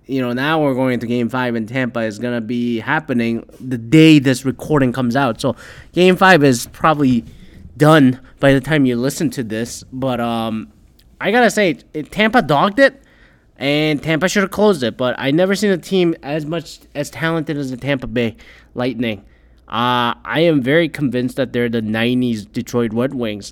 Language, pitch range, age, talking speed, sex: English, 125-165 Hz, 20-39, 195 wpm, male